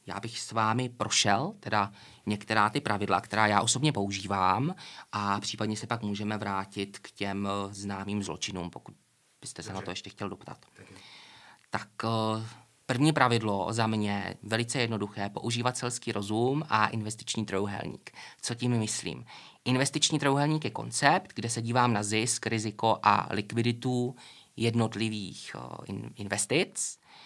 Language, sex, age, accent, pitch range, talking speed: Czech, male, 20-39, native, 105-120 Hz, 130 wpm